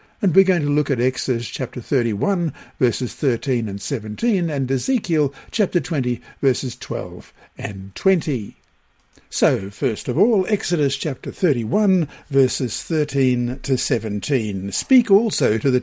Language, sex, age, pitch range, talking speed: English, male, 60-79, 125-170 Hz, 135 wpm